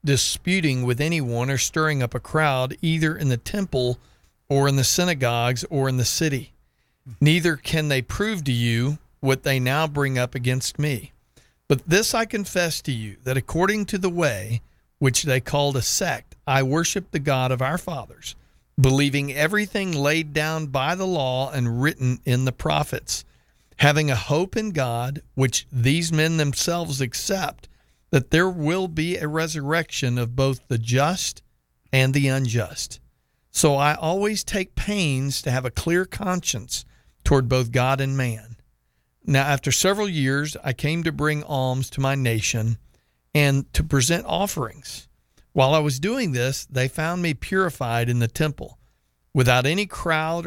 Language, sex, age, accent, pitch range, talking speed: English, male, 50-69, American, 125-160 Hz, 165 wpm